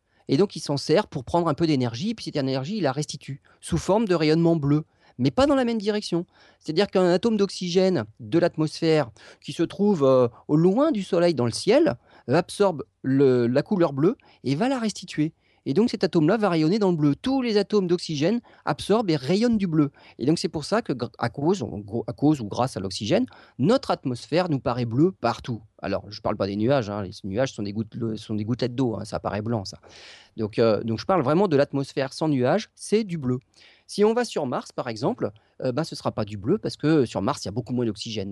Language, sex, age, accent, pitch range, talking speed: French, male, 30-49, French, 120-180 Hz, 235 wpm